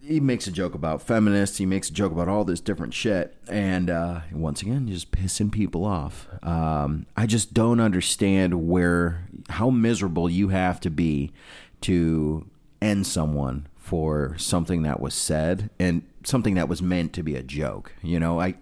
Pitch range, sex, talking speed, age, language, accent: 80-100 Hz, male, 180 wpm, 30-49, English, American